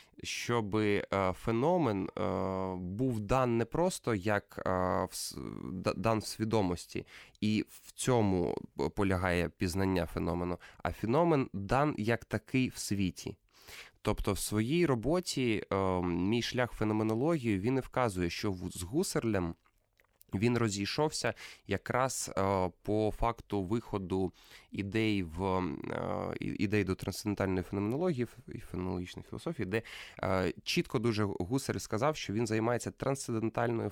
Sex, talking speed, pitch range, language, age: male, 110 wpm, 95-120 Hz, Ukrainian, 20-39